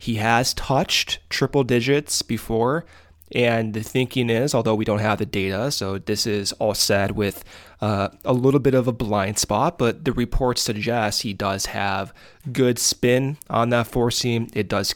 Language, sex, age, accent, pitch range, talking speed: English, male, 20-39, American, 100-120 Hz, 180 wpm